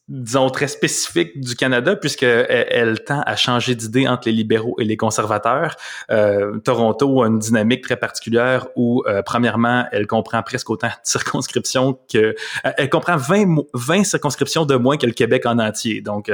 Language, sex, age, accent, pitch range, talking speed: French, male, 20-39, Canadian, 115-150 Hz, 175 wpm